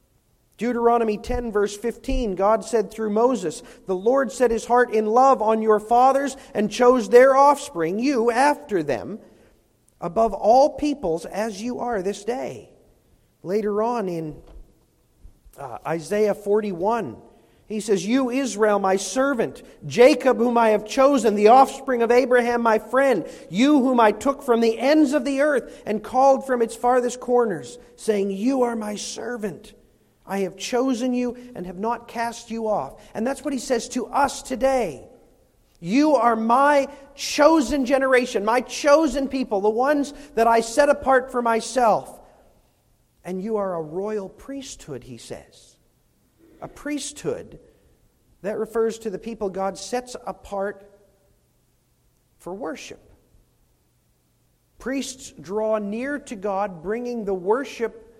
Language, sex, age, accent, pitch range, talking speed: English, male, 40-59, American, 210-265 Hz, 145 wpm